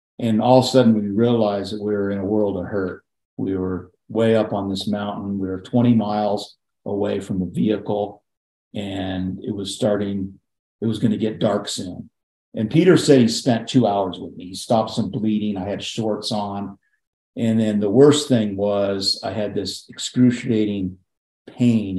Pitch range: 100-115 Hz